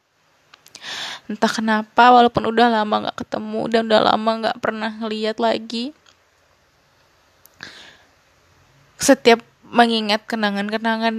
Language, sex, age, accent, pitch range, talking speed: Indonesian, female, 10-29, native, 220-245 Hz, 90 wpm